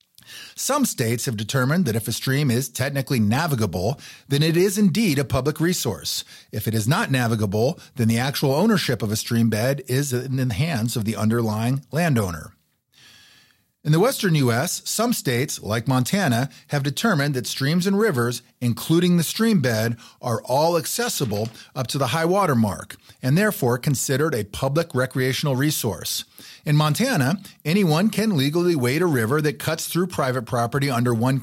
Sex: male